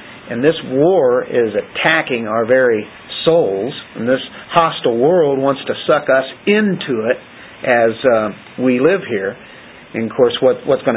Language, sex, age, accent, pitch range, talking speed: English, male, 50-69, American, 115-145 Hz, 160 wpm